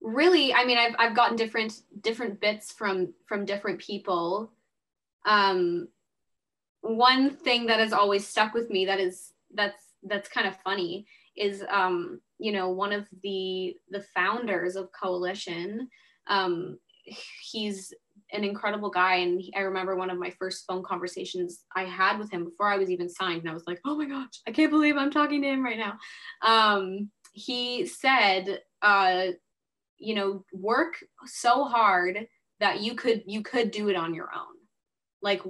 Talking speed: 165 wpm